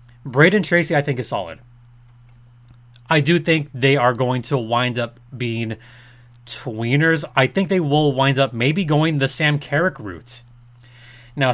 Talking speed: 155 wpm